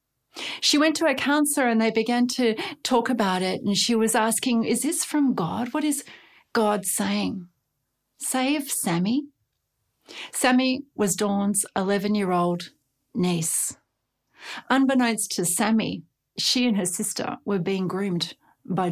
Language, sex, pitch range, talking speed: English, female, 190-255 Hz, 135 wpm